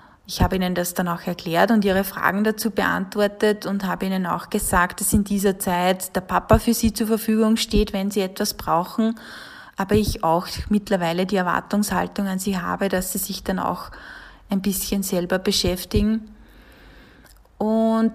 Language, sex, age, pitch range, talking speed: German, female, 20-39, 195-230 Hz, 170 wpm